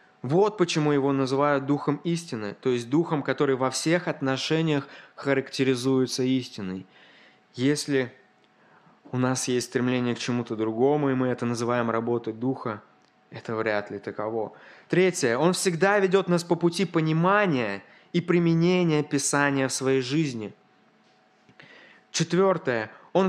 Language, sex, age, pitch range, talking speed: Russian, male, 20-39, 125-160 Hz, 125 wpm